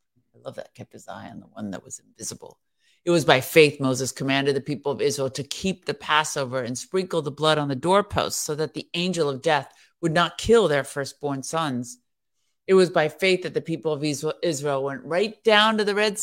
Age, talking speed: 50-69, 220 wpm